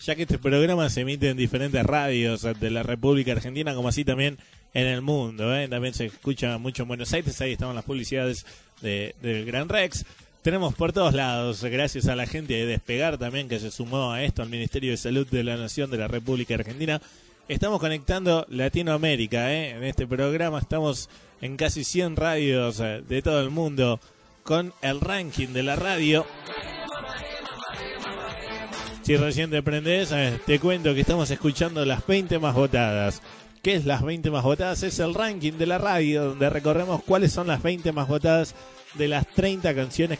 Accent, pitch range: Argentinian, 125-160 Hz